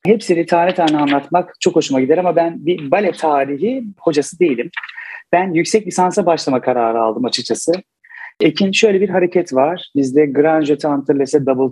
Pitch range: 135-170 Hz